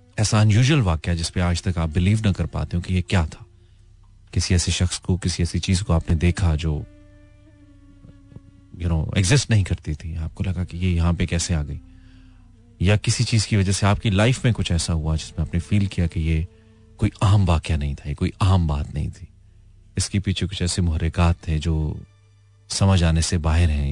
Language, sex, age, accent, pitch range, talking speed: Hindi, male, 30-49, native, 85-100 Hz, 205 wpm